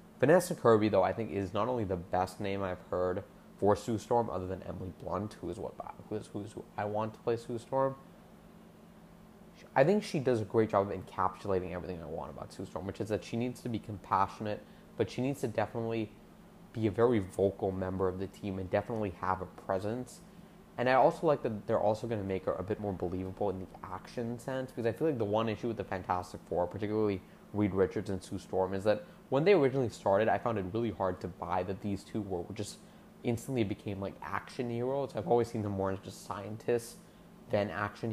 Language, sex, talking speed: English, male, 220 wpm